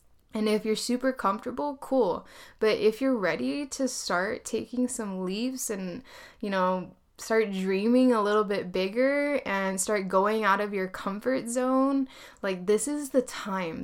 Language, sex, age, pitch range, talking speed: English, female, 10-29, 190-230 Hz, 160 wpm